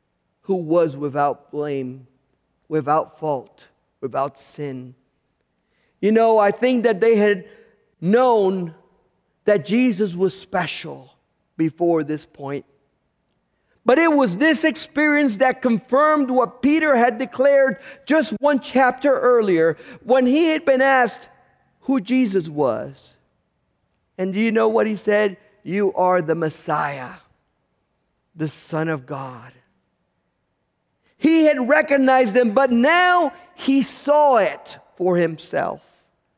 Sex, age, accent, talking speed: male, 50-69, American, 120 wpm